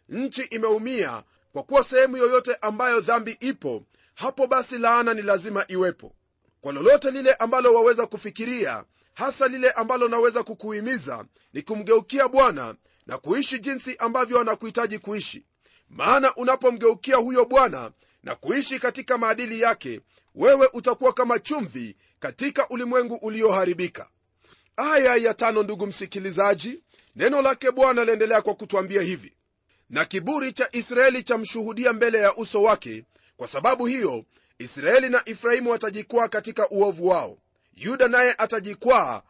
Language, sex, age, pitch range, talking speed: Swahili, male, 40-59, 215-255 Hz, 130 wpm